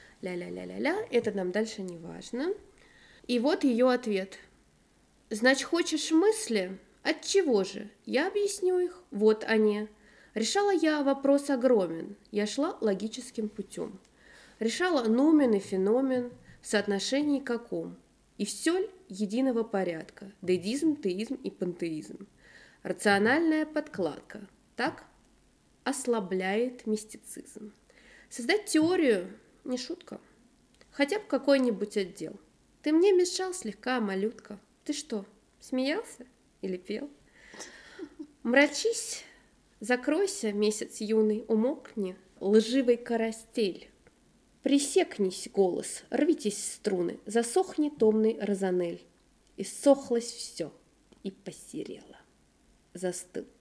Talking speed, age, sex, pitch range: 100 wpm, 20-39, female, 205-285 Hz